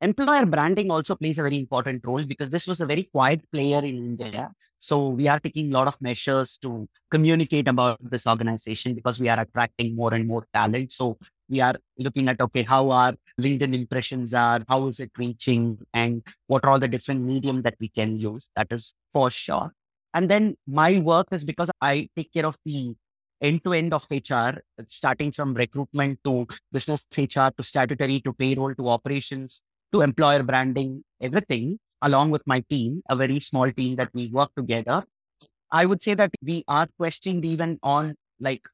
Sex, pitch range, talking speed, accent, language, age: male, 125-160 Hz, 185 wpm, Indian, English, 30-49